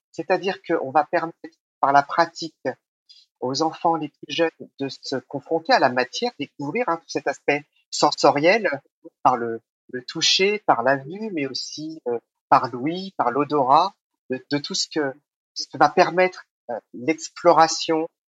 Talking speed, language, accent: 160 wpm, French, French